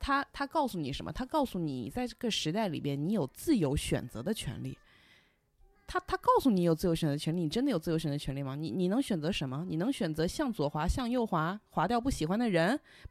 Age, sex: 20-39, female